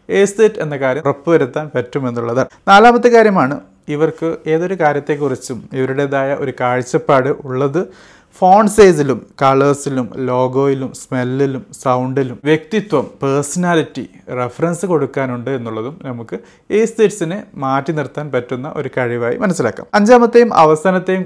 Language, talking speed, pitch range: Malayalam, 100 wpm, 135-170 Hz